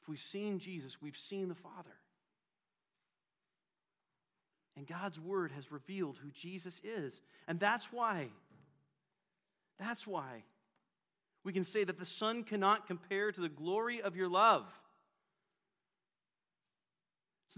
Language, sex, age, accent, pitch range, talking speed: English, male, 40-59, American, 130-210 Hz, 125 wpm